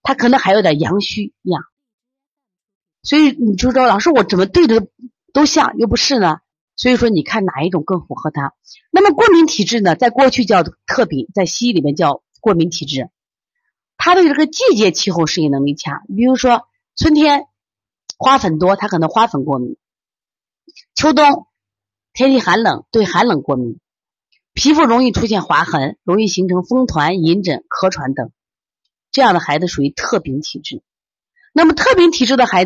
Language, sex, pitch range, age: Chinese, female, 165-250 Hz, 30-49